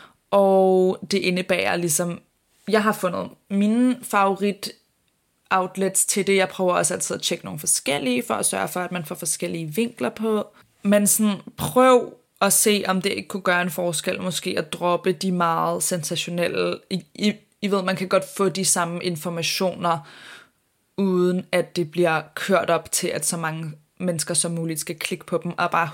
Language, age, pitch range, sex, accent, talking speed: Danish, 20-39, 165-190 Hz, female, native, 180 wpm